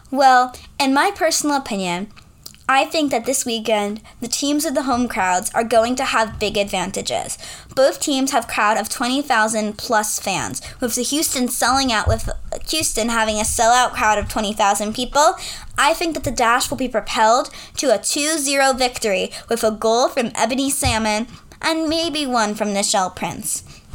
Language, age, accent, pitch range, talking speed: English, 10-29, American, 220-270 Hz, 170 wpm